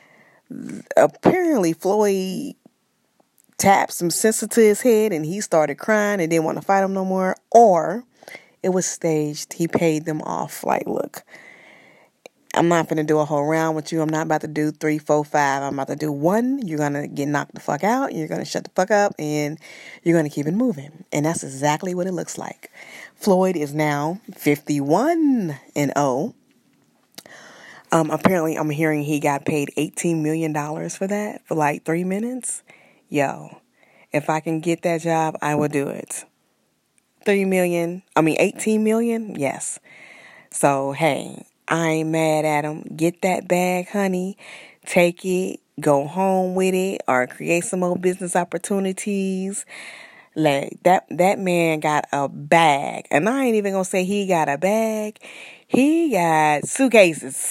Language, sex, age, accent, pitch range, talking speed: English, female, 20-39, American, 155-195 Hz, 170 wpm